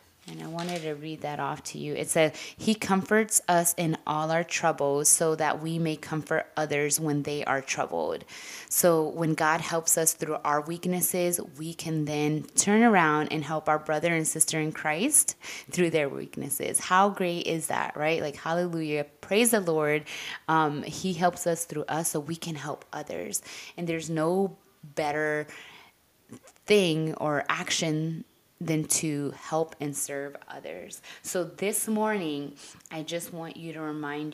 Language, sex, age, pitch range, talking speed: English, female, 20-39, 150-175 Hz, 165 wpm